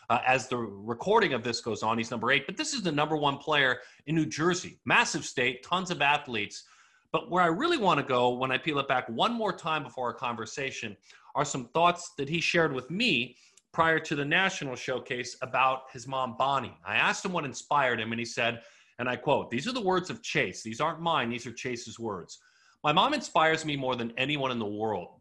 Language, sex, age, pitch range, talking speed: English, male, 40-59, 120-170 Hz, 225 wpm